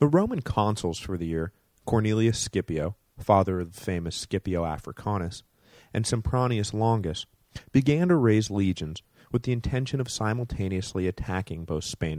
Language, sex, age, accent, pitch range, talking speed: English, male, 30-49, American, 90-115 Hz, 145 wpm